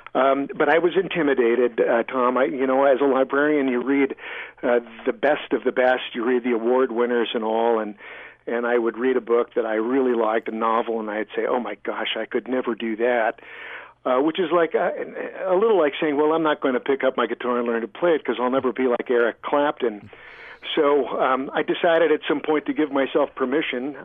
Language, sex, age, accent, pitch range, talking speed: English, male, 50-69, American, 120-145 Hz, 230 wpm